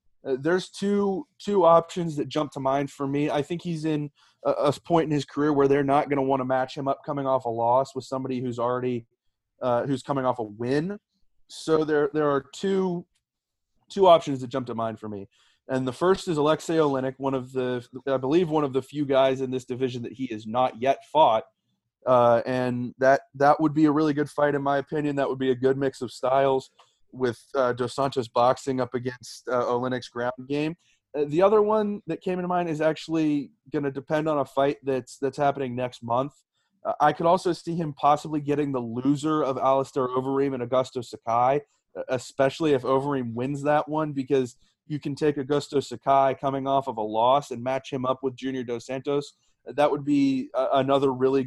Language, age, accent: English, 20-39, American